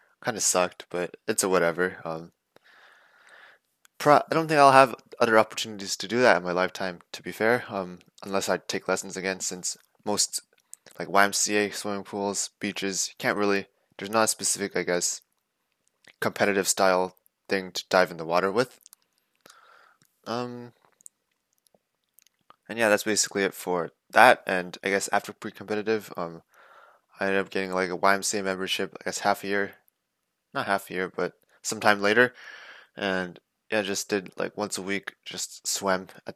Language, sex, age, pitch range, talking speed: English, male, 20-39, 90-105 Hz, 170 wpm